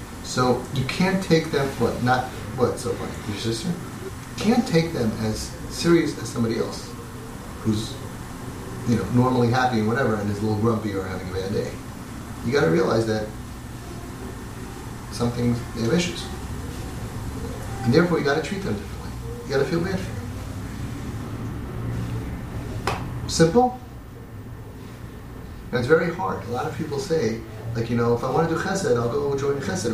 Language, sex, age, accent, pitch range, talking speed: English, male, 30-49, American, 105-135 Hz, 170 wpm